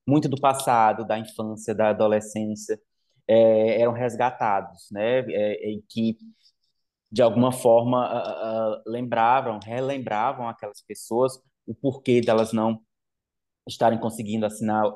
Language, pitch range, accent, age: Portuguese, 110-145 Hz, Brazilian, 20-39